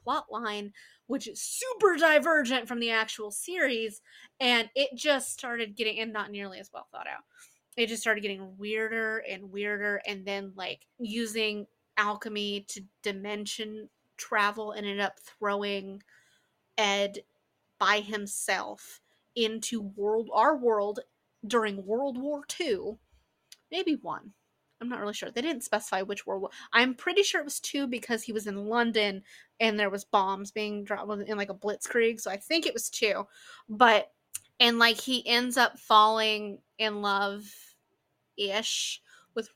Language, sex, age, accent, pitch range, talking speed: English, female, 30-49, American, 210-295 Hz, 150 wpm